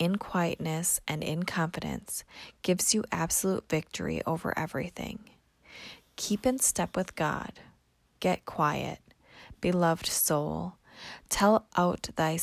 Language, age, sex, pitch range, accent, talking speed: English, 20-39, female, 160-195 Hz, American, 110 wpm